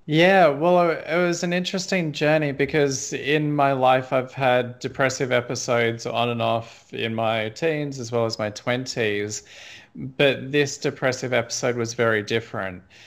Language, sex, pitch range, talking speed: English, male, 115-135 Hz, 150 wpm